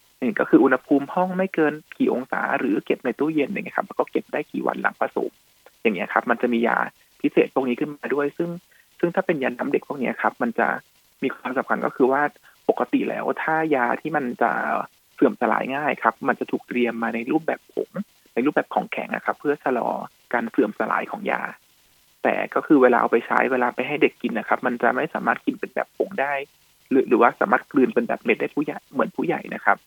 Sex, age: male, 20-39